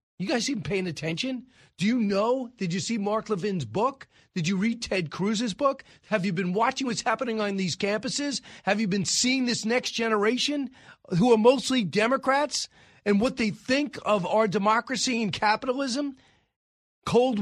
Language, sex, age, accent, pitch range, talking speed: English, male, 40-59, American, 195-245 Hz, 170 wpm